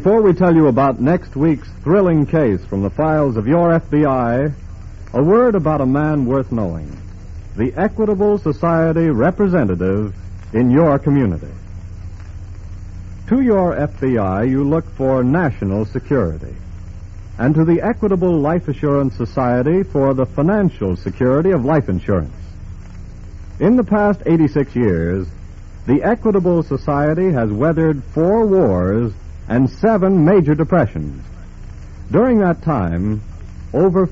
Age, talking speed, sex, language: 60-79, 125 wpm, male, English